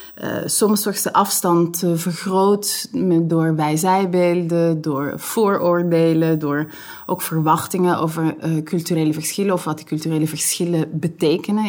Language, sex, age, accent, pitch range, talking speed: Dutch, female, 20-39, Dutch, 165-195 Hz, 125 wpm